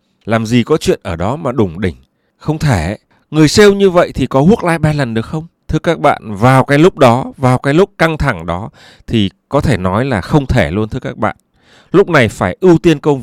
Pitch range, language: 105-150 Hz, Vietnamese